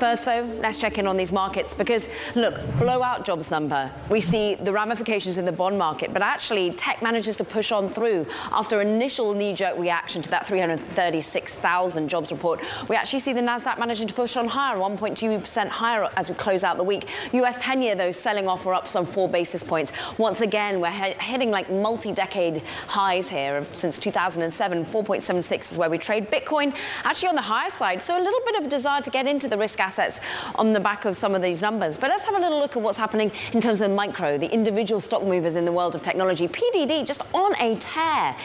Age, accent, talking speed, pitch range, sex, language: 30-49, British, 215 wpm, 175-230 Hz, female, English